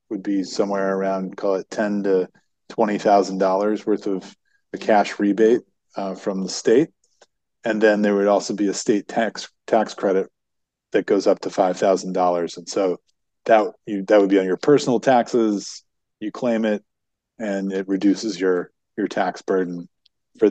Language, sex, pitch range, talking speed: English, male, 95-105 Hz, 175 wpm